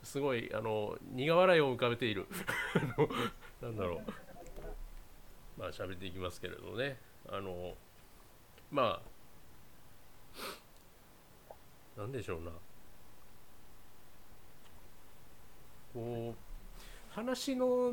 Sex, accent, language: male, native, Japanese